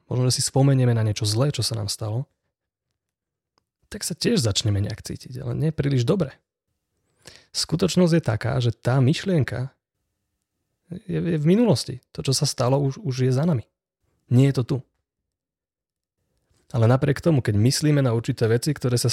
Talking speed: 165 wpm